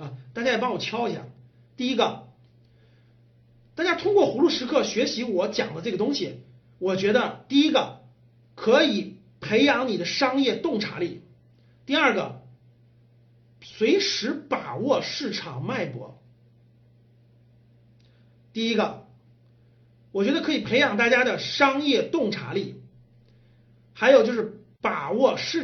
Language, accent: Chinese, native